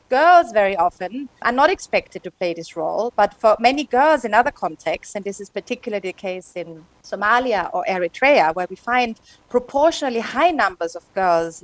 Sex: female